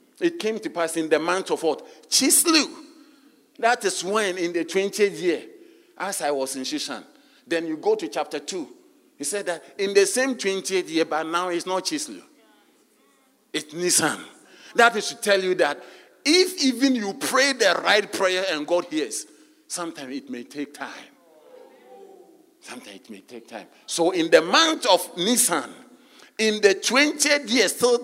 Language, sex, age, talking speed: English, male, 50-69, 170 wpm